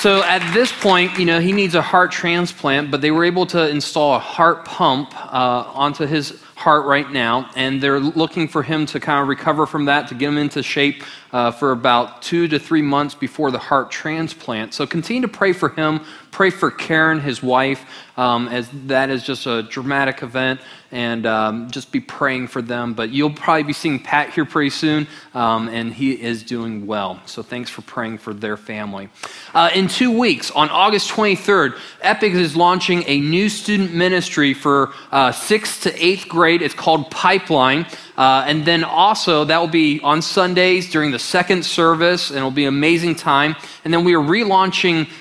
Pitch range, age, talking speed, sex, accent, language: 135-175 Hz, 20-39, 195 wpm, male, American, English